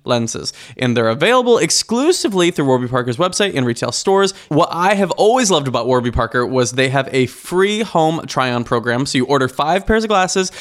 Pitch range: 125-190 Hz